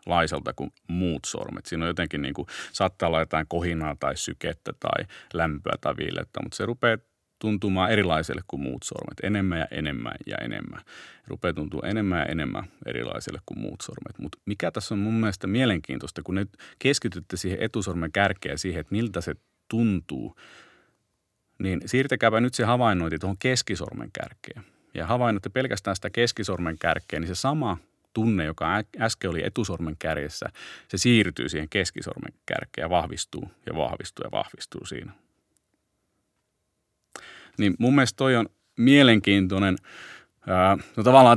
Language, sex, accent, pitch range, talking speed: Finnish, male, native, 85-115 Hz, 150 wpm